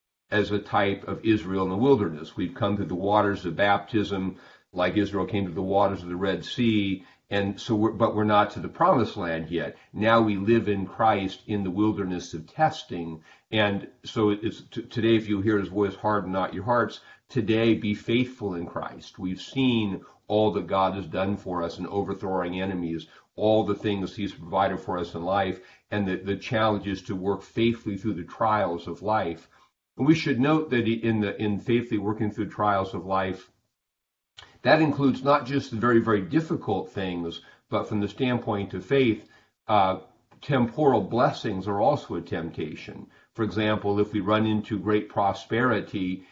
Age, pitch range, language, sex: 50-69, 95-115 Hz, English, male